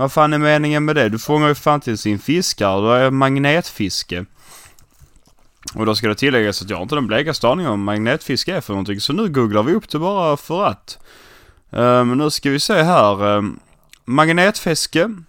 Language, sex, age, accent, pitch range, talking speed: English, male, 20-39, Swedish, 105-150 Hz, 190 wpm